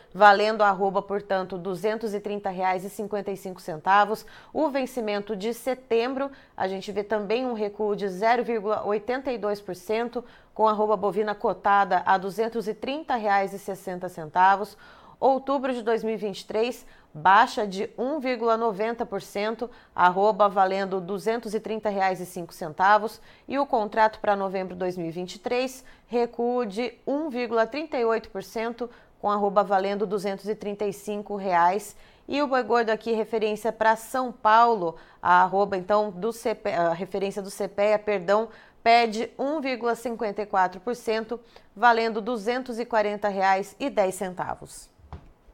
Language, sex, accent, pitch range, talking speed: Portuguese, female, Brazilian, 195-230 Hz, 100 wpm